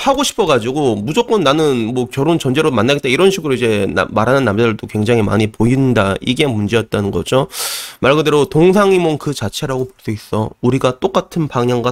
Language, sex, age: Korean, male, 30-49